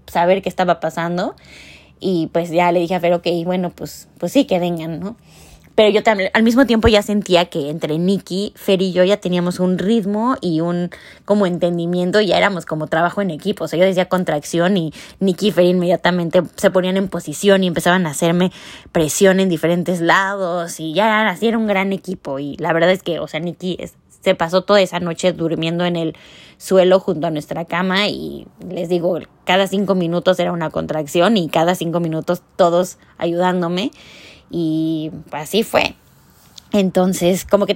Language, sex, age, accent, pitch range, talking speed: Spanish, female, 20-39, Mexican, 165-190 Hz, 190 wpm